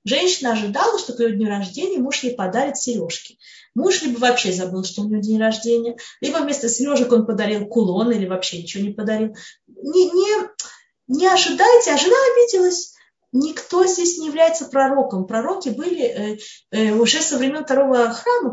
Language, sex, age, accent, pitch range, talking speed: Russian, female, 20-39, native, 220-365 Hz, 160 wpm